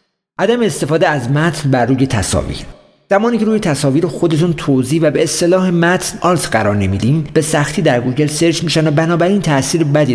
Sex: male